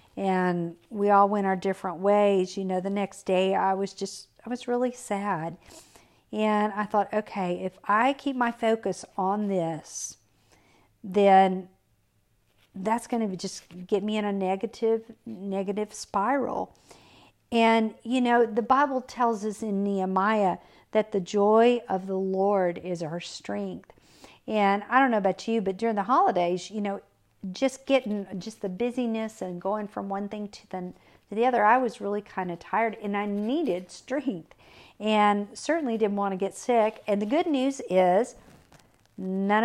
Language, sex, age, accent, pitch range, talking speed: English, female, 50-69, American, 185-225 Hz, 165 wpm